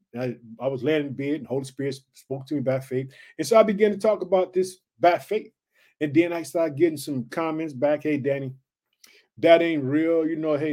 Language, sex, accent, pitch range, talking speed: English, male, American, 145-185 Hz, 225 wpm